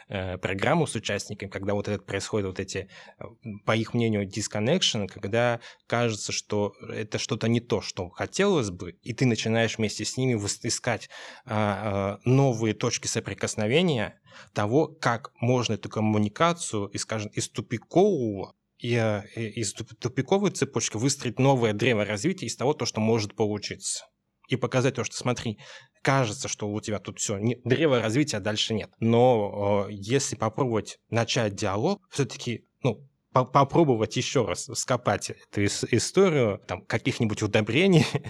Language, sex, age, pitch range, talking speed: Russian, male, 20-39, 105-120 Hz, 140 wpm